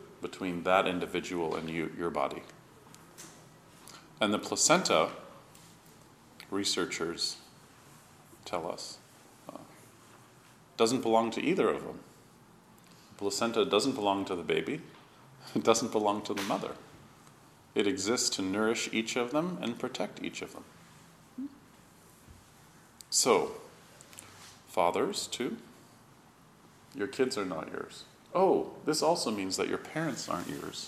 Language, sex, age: English, male, 40-59